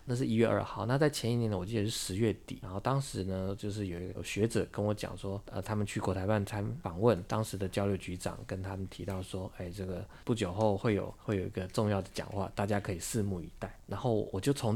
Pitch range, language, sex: 95-115 Hz, Chinese, male